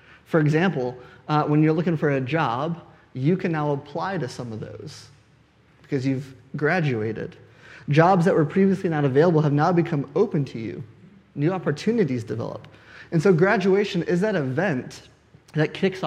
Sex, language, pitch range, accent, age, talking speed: male, English, 130-175 Hz, American, 30-49, 160 wpm